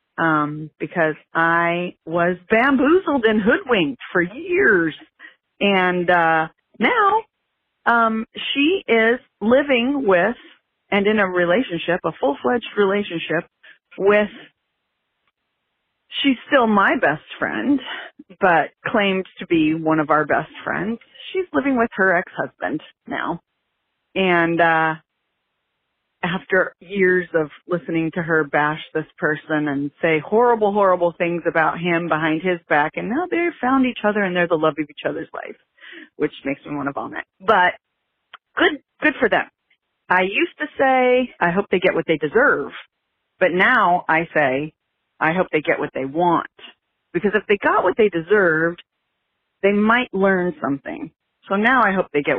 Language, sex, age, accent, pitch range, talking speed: English, female, 40-59, American, 160-230 Hz, 150 wpm